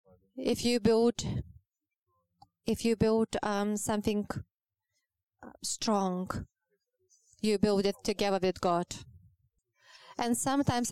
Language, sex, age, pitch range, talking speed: English, female, 20-39, 195-230 Hz, 95 wpm